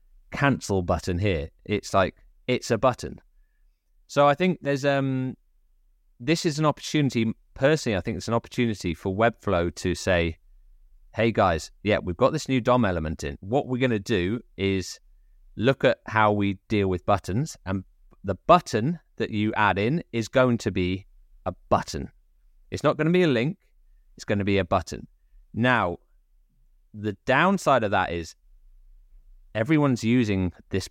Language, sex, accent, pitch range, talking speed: English, male, British, 90-125 Hz, 165 wpm